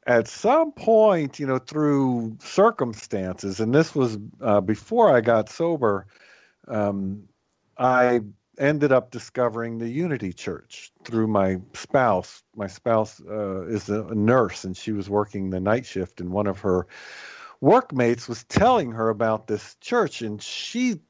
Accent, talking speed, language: American, 150 wpm, English